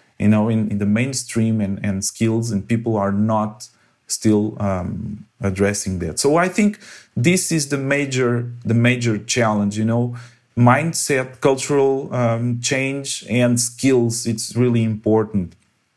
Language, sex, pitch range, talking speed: English, male, 110-125 Hz, 145 wpm